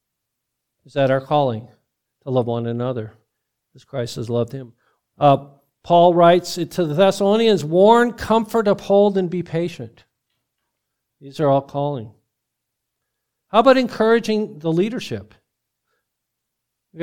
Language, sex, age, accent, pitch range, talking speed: English, male, 50-69, American, 120-170 Hz, 125 wpm